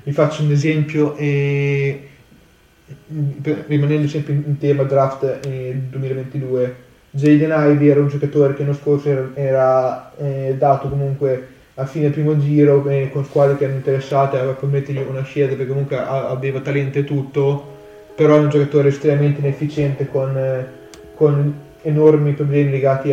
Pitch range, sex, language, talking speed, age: 135-145 Hz, male, Italian, 155 wpm, 10-29